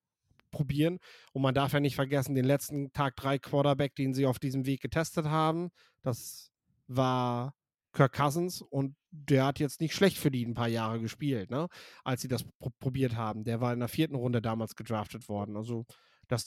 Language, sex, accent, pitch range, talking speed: German, male, German, 125-150 Hz, 180 wpm